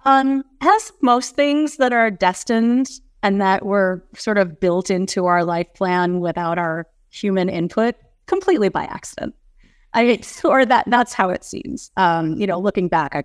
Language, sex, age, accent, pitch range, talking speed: English, female, 30-49, American, 165-210 Hz, 170 wpm